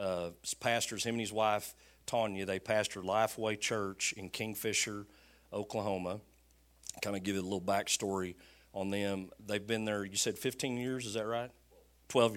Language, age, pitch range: English, 40-59, 95-110 Hz